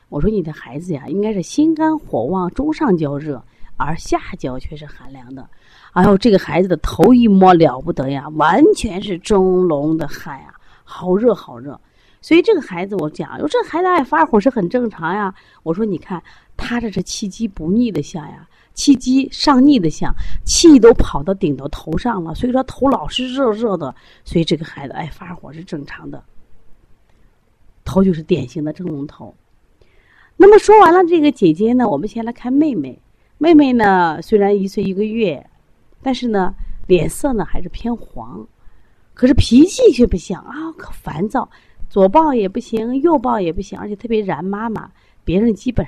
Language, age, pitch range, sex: Chinese, 30-49, 165-245 Hz, female